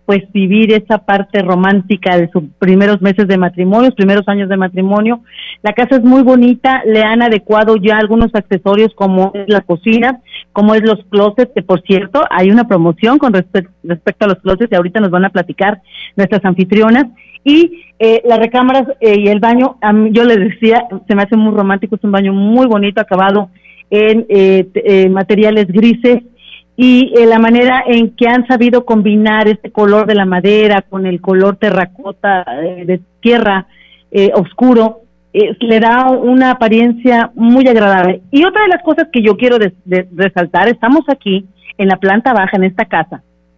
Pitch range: 190-235 Hz